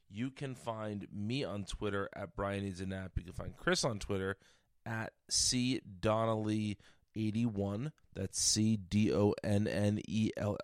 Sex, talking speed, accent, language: male, 160 wpm, American, English